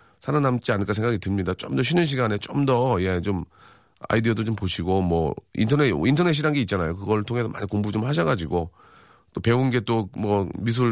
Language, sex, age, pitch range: Korean, male, 40-59, 95-140 Hz